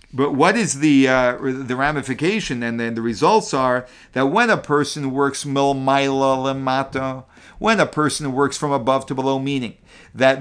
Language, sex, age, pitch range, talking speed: English, male, 50-69, 135-185 Hz, 165 wpm